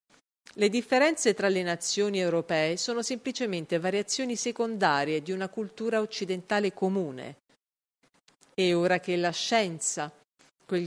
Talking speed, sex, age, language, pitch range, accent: 115 wpm, female, 40-59, Italian, 175-230 Hz, native